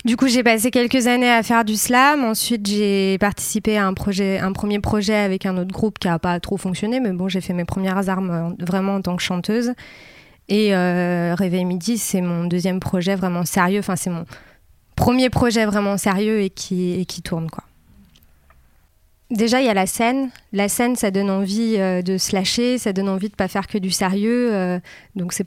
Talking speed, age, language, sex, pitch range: 205 wpm, 20-39, French, female, 185-225 Hz